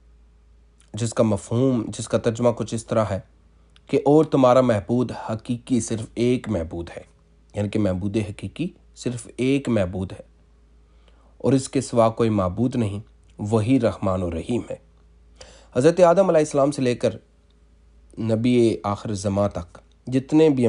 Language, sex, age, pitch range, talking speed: Urdu, male, 30-49, 85-115 Hz, 150 wpm